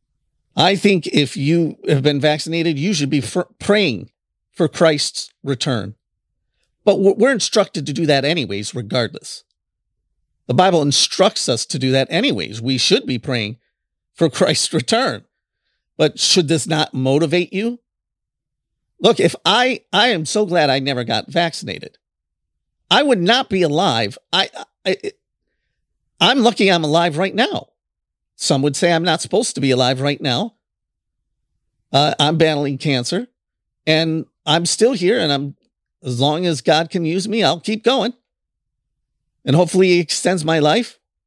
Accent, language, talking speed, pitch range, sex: American, English, 150 wpm, 135-195 Hz, male